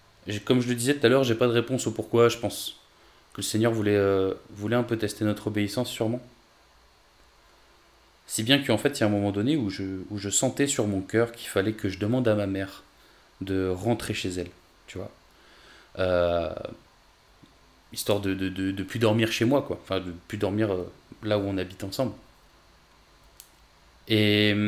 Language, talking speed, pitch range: French, 205 wpm, 100-125 Hz